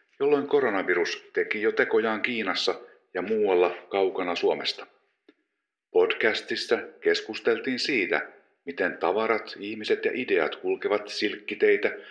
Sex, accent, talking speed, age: male, native, 100 wpm, 50-69